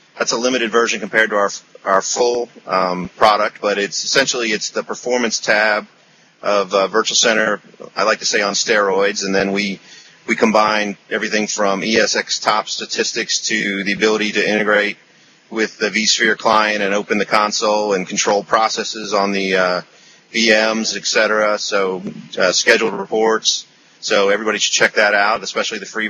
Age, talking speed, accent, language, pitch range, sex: 40-59, 165 wpm, American, English, 100-115 Hz, male